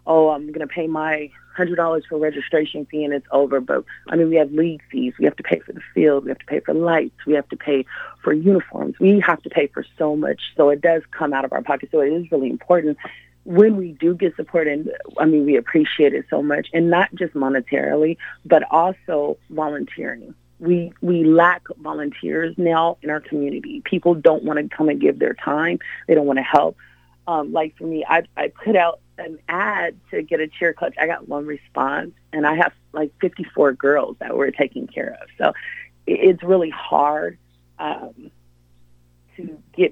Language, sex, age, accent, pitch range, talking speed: English, female, 30-49, American, 140-170 Hz, 205 wpm